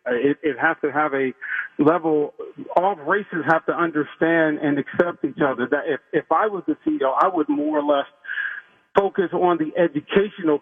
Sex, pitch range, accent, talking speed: male, 150-185 Hz, American, 180 wpm